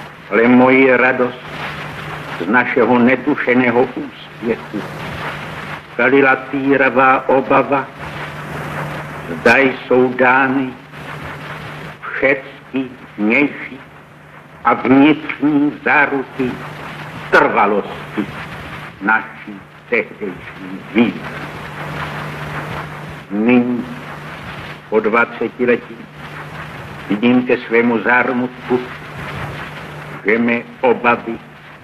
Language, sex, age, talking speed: Czech, male, 70-89, 60 wpm